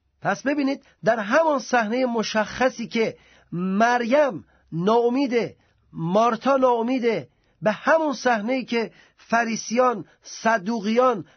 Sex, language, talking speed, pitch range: male, Persian, 90 wpm, 180-235 Hz